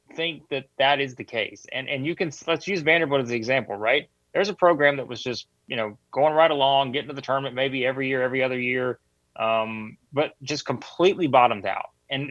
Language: English